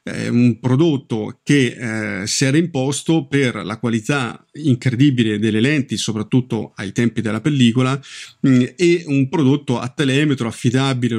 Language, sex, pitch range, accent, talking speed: Italian, male, 110-130 Hz, native, 135 wpm